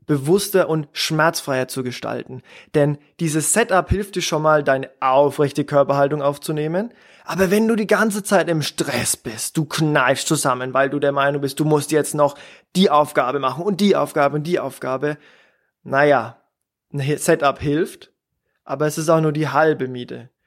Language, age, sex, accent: German, 20-39, male, German